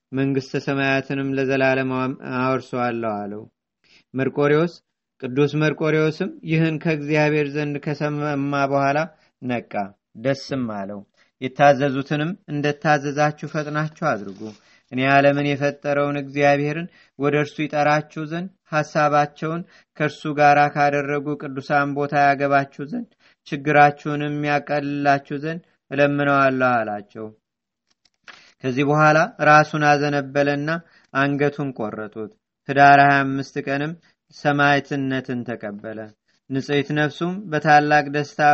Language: Amharic